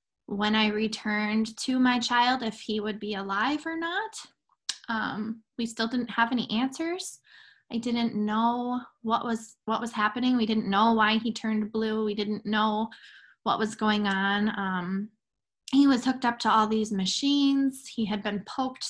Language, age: English, 20-39